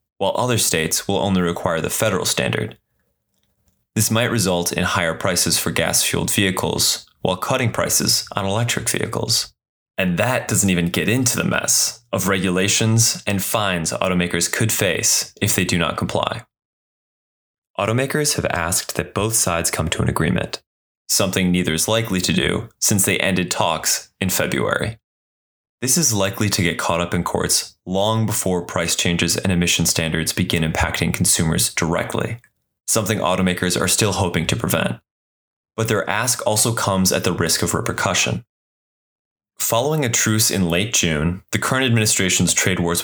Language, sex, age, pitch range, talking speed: English, male, 20-39, 85-110 Hz, 160 wpm